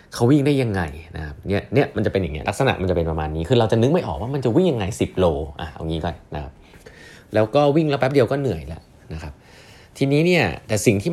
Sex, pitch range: male, 85-115 Hz